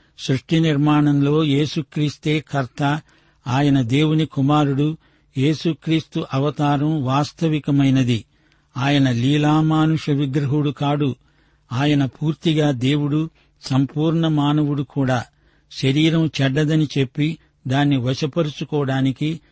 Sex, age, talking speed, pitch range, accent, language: male, 60-79, 75 wpm, 135-155 Hz, native, Telugu